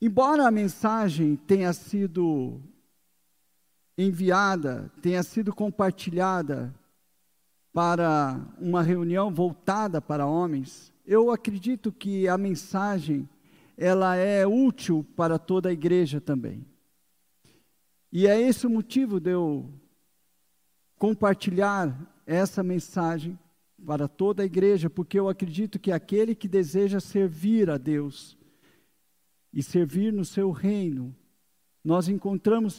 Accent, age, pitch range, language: Brazilian, 50-69, 145-195 Hz, Portuguese